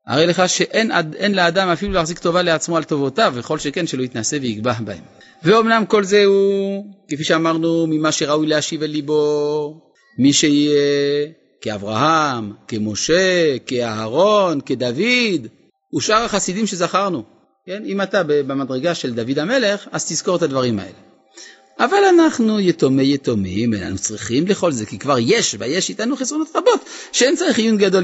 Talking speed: 140 wpm